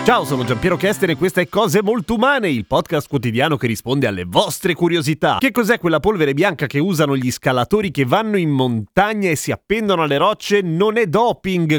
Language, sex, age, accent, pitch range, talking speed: Italian, male, 30-49, native, 140-185 Hz, 205 wpm